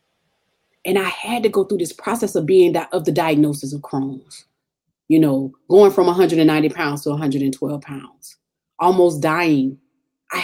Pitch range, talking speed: 150-210 Hz, 160 wpm